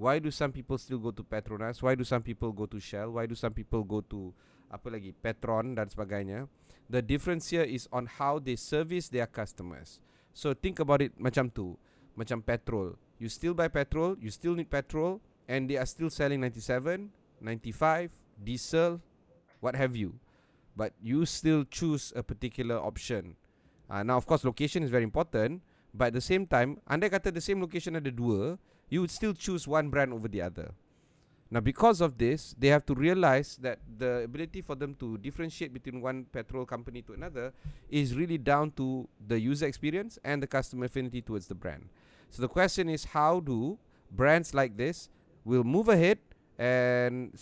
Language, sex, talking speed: Malay, male, 185 wpm